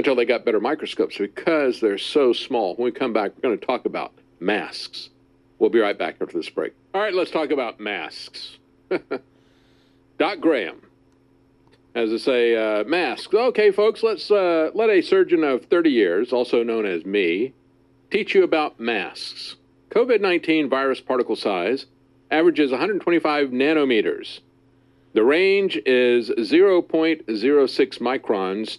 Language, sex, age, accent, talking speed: English, male, 50-69, American, 140 wpm